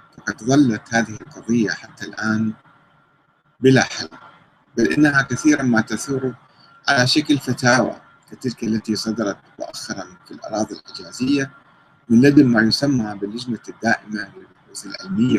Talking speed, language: 115 wpm, Arabic